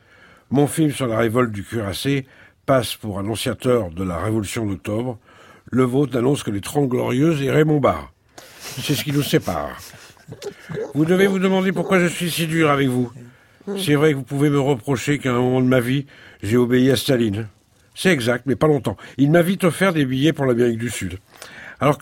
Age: 60-79